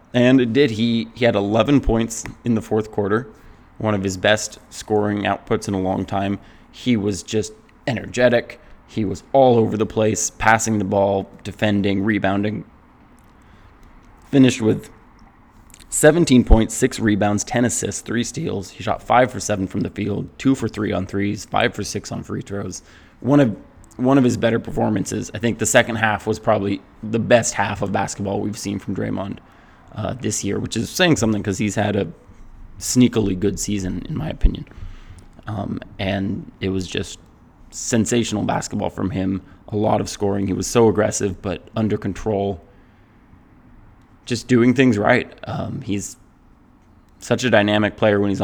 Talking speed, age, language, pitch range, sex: 170 wpm, 20-39, English, 100-115 Hz, male